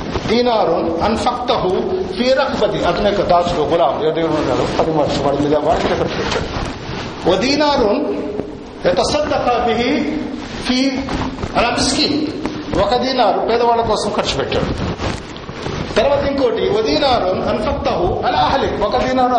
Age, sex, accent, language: 50-69, male, native, Telugu